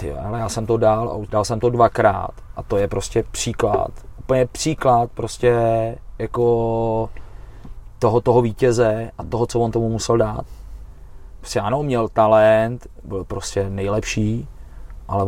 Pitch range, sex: 100-120 Hz, male